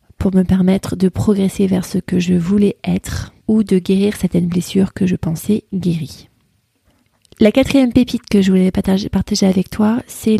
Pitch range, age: 160-205 Hz, 30-49